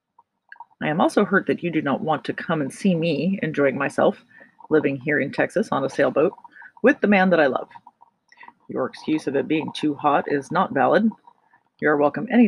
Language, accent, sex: English, American, female